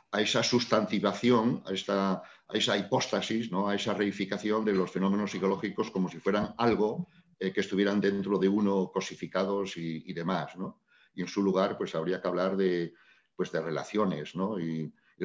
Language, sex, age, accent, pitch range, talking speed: Spanish, male, 50-69, Spanish, 95-110 Hz, 180 wpm